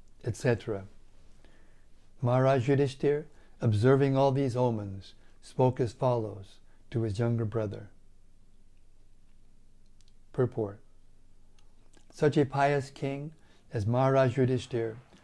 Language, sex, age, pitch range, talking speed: English, male, 60-79, 105-130 Hz, 85 wpm